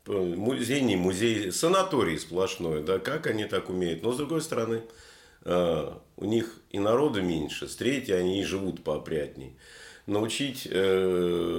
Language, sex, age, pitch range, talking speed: Russian, male, 50-69, 85-110 Hz, 135 wpm